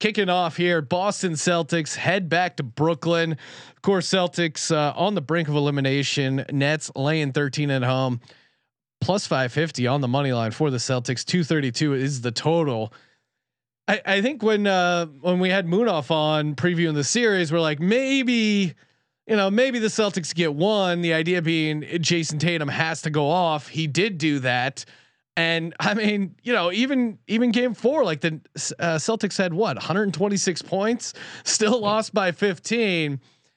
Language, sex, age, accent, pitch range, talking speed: English, male, 30-49, American, 150-200 Hz, 170 wpm